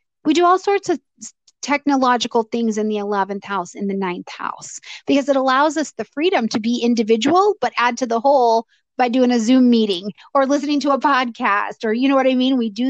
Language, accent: English, American